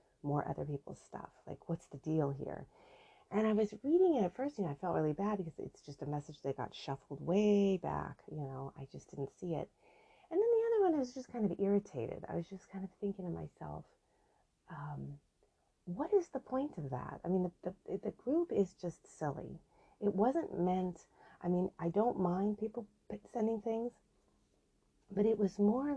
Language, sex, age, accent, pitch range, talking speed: English, female, 30-49, American, 160-210 Hz, 205 wpm